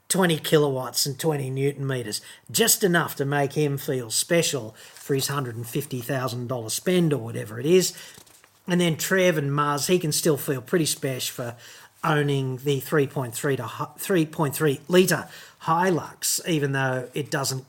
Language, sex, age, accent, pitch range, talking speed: English, male, 40-59, Australian, 130-165 Hz, 150 wpm